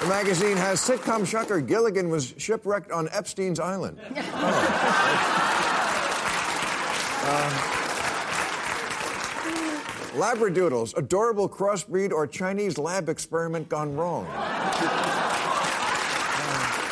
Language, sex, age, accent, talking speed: English, male, 50-69, American, 80 wpm